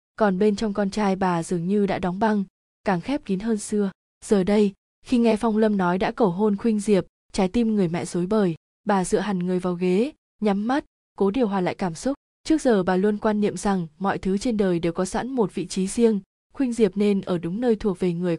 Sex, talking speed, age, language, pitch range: female, 245 wpm, 20-39, Vietnamese, 185-225 Hz